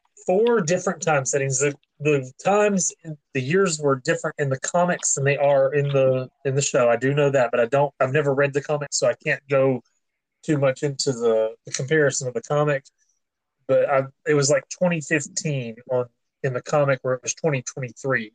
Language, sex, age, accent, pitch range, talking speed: English, male, 30-49, American, 130-165 Hz, 205 wpm